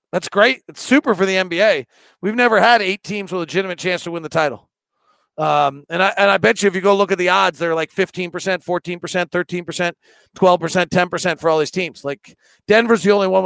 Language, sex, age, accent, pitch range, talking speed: English, male, 40-59, American, 170-205 Hz, 245 wpm